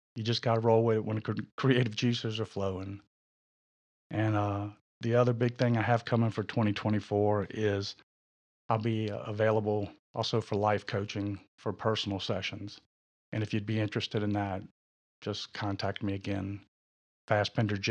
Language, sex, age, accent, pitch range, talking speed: English, male, 40-59, American, 100-115 Hz, 155 wpm